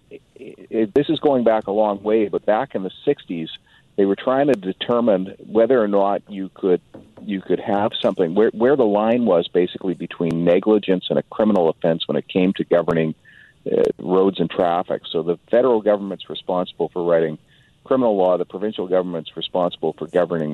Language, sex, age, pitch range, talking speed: English, male, 50-69, 85-110 Hz, 185 wpm